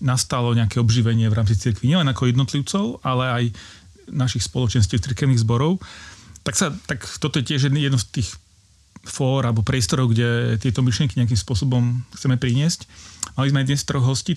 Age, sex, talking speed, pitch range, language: 40-59, male, 165 wpm, 115-140 Hz, Slovak